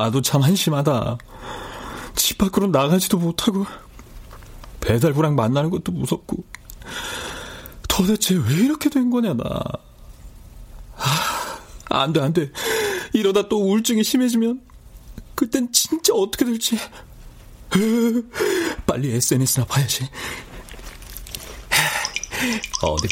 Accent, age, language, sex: native, 40-59, Korean, male